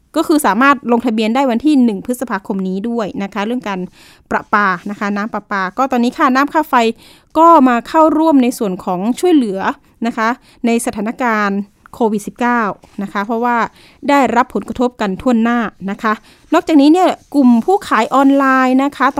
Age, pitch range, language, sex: 20-39, 215-275 Hz, Thai, female